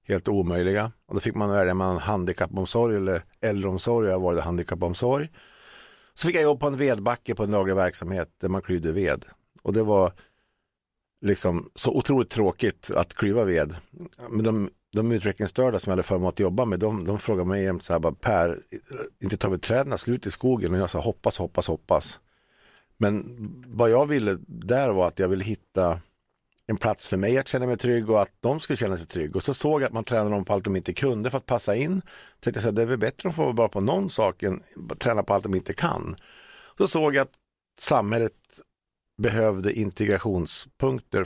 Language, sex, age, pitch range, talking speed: Swedish, male, 50-69, 95-120 Hz, 205 wpm